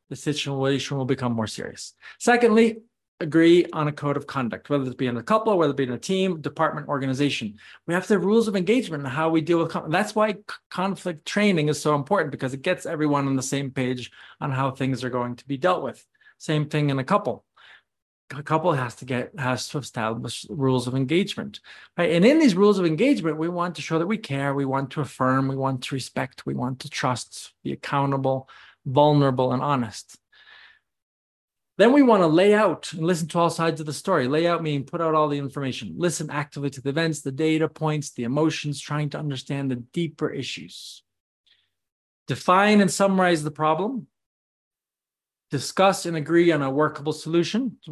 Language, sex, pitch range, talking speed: English, male, 135-175 Hz, 205 wpm